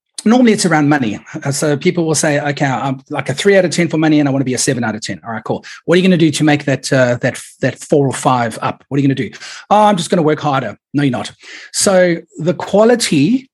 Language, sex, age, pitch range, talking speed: English, male, 30-49, 140-185 Hz, 295 wpm